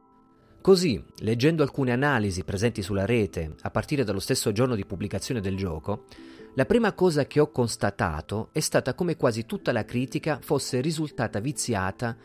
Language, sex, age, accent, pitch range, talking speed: Italian, male, 30-49, native, 105-130 Hz, 155 wpm